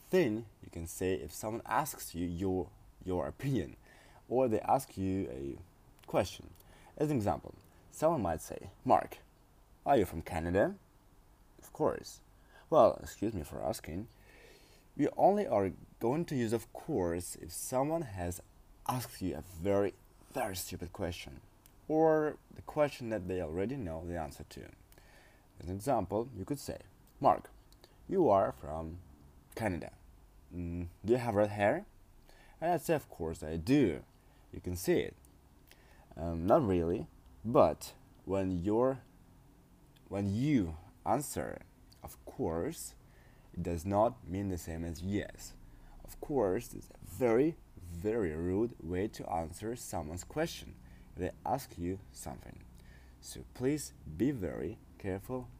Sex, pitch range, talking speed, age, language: male, 85-110 Hz, 140 wpm, 20-39, English